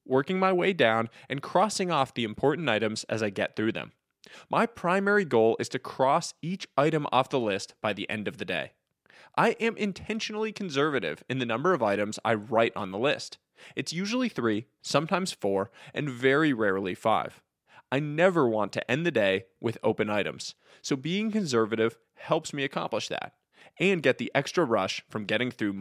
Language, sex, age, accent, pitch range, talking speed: English, male, 20-39, American, 110-175 Hz, 185 wpm